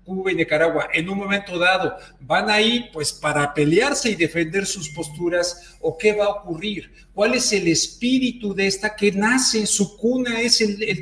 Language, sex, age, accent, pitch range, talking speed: Spanish, male, 50-69, Mexican, 155-200 Hz, 180 wpm